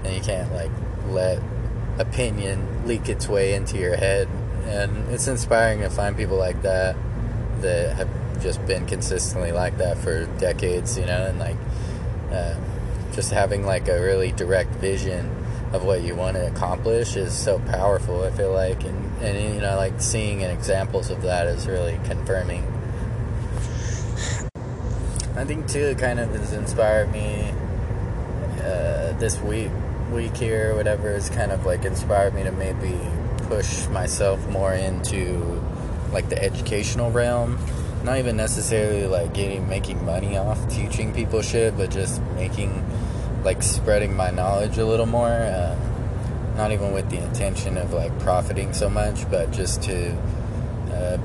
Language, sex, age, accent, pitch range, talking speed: English, male, 20-39, American, 95-115 Hz, 155 wpm